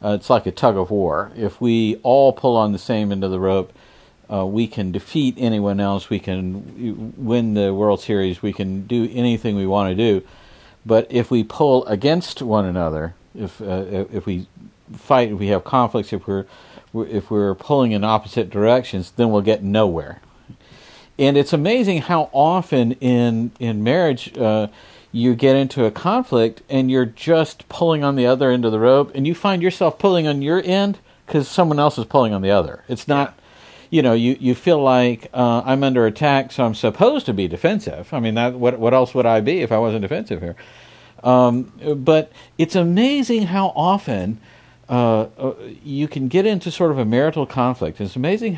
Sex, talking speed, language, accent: male, 195 wpm, English, American